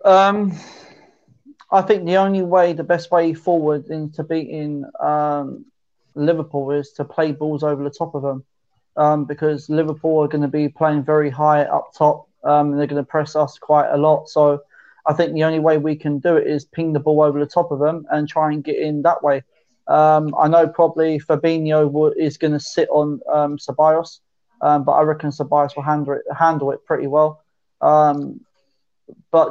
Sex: male